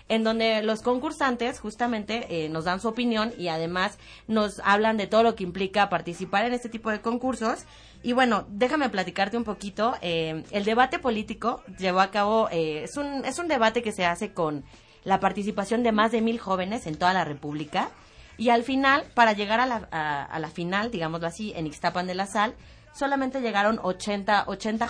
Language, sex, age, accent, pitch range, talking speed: Spanish, female, 30-49, Mexican, 180-235 Hz, 195 wpm